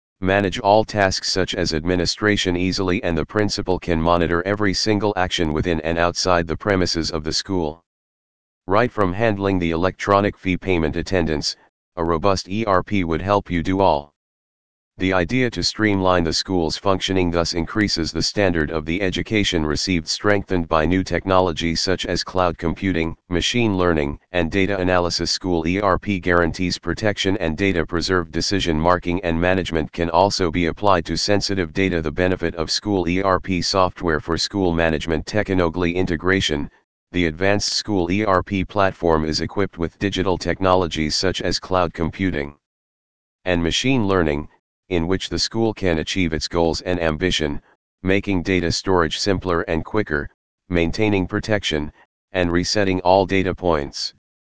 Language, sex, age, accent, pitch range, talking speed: English, male, 40-59, American, 85-95 Hz, 150 wpm